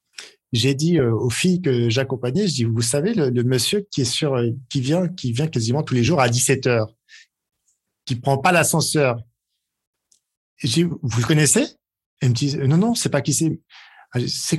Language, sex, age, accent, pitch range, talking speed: French, male, 50-69, French, 120-165 Hz, 195 wpm